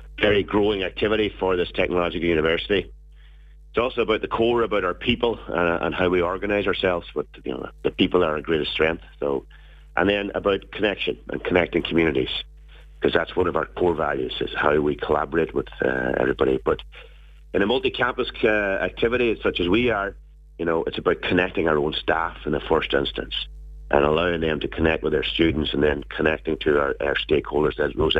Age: 40-59